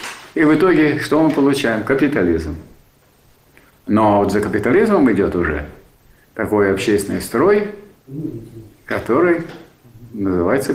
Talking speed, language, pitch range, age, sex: 100 wpm, Russian, 100-135 Hz, 50-69, male